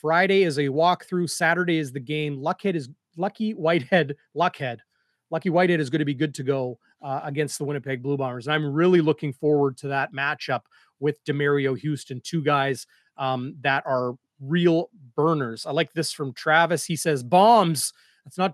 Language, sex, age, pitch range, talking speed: English, male, 30-49, 145-180 Hz, 180 wpm